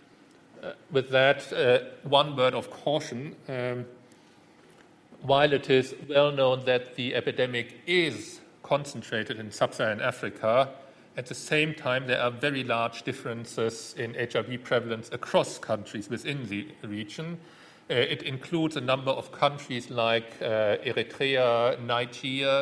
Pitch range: 120-150 Hz